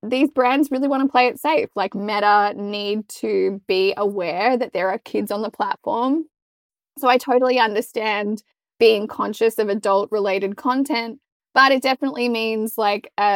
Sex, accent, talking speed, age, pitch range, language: female, Australian, 160 wpm, 20-39, 205-255 Hz, English